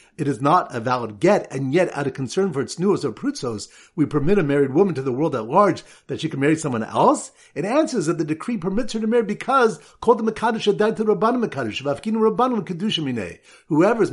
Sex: male